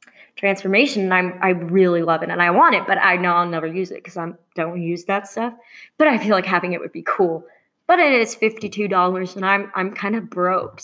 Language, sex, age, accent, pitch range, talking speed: English, female, 20-39, American, 180-230 Hz, 240 wpm